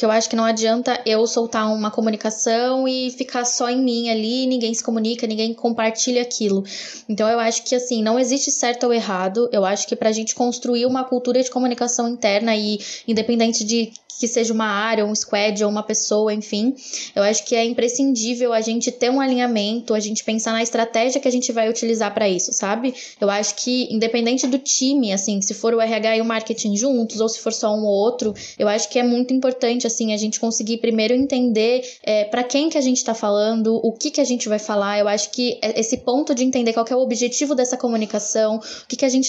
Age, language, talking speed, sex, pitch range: 10-29, Portuguese, 225 wpm, female, 220-250 Hz